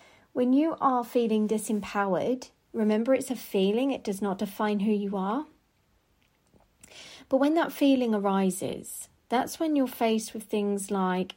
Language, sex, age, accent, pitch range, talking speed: English, female, 40-59, British, 205-265 Hz, 150 wpm